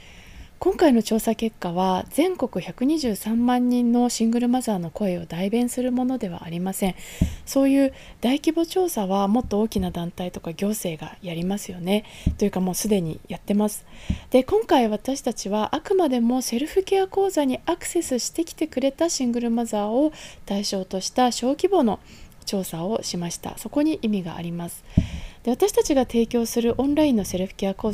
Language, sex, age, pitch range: Japanese, female, 20-39, 195-270 Hz